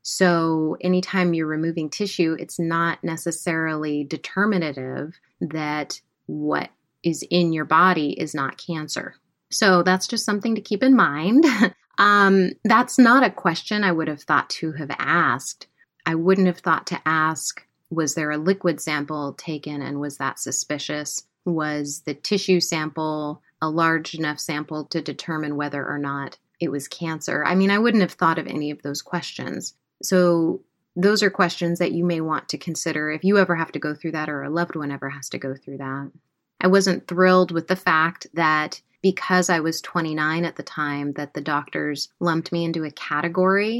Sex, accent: female, American